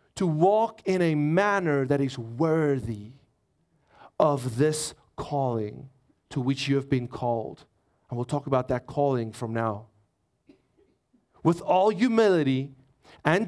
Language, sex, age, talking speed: English, male, 40-59, 130 wpm